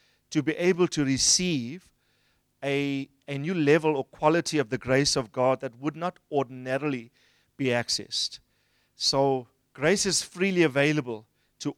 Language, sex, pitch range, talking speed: English, male, 130-160 Hz, 145 wpm